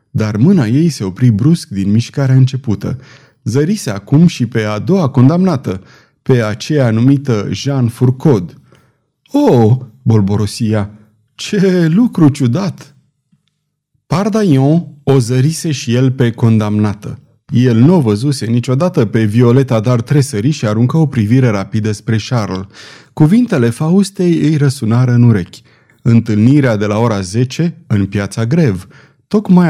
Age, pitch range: 30-49, 110-150 Hz